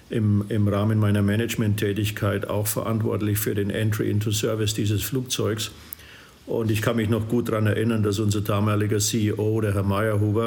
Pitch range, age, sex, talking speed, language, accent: 105-115 Hz, 50-69, male, 165 wpm, German, German